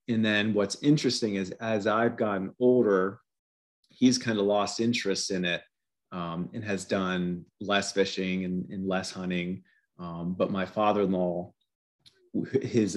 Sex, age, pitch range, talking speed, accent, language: male, 30-49, 95-110 Hz, 145 wpm, American, English